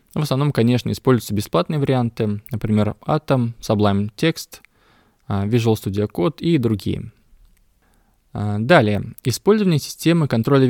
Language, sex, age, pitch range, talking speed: Russian, male, 20-39, 105-140 Hz, 105 wpm